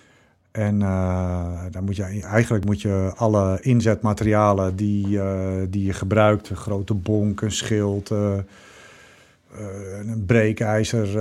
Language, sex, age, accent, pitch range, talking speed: Dutch, male, 50-69, Dutch, 95-110 Hz, 130 wpm